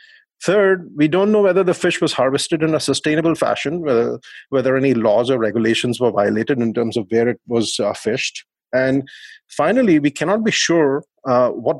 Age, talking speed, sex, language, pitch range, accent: 30-49, 190 wpm, male, English, 120-155 Hz, Indian